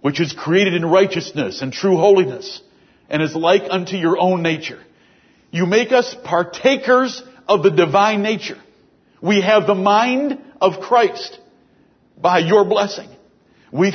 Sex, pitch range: male, 170-205 Hz